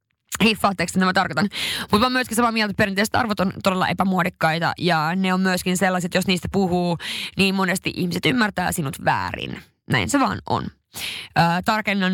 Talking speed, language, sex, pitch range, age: 170 wpm, Finnish, female, 175-200 Hz, 20-39